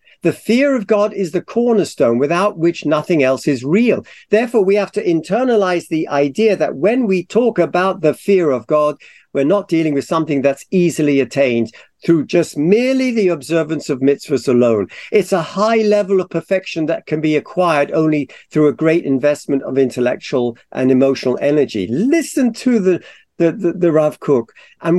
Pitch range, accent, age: 145-205 Hz, British, 50-69